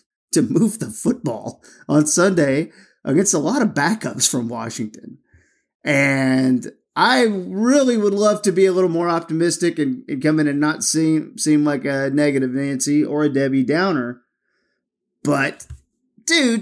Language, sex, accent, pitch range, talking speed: English, male, American, 140-205 Hz, 150 wpm